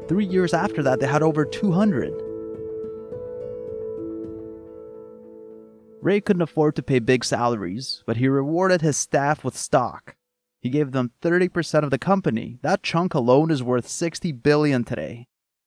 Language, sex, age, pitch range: English, male, 30-49, 125-175 Hz